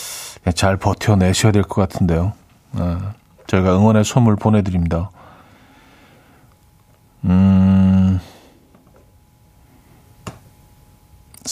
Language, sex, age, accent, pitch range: Korean, male, 40-59, native, 95-130 Hz